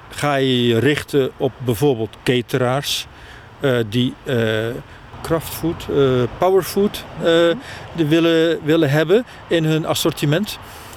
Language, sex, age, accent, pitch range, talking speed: Dutch, male, 50-69, Dutch, 115-150 Hz, 110 wpm